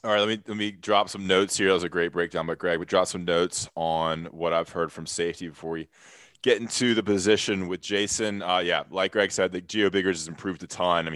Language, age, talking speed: English, 20-39, 260 wpm